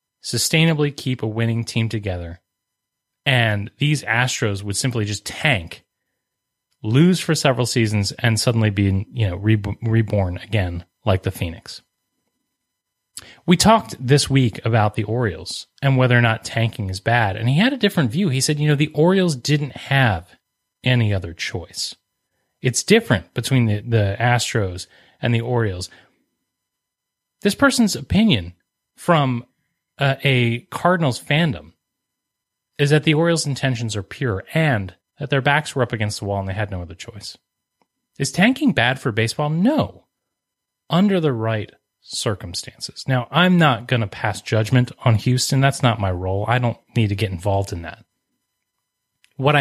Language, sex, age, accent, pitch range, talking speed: English, male, 30-49, American, 105-145 Hz, 155 wpm